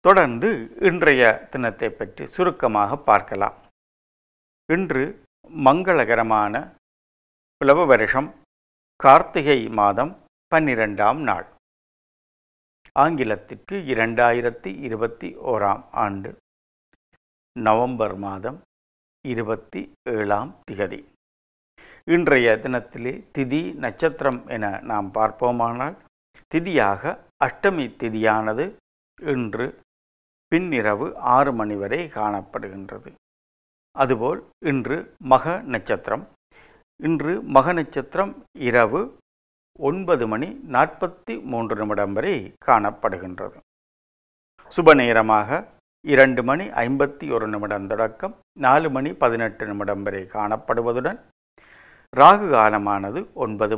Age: 50-69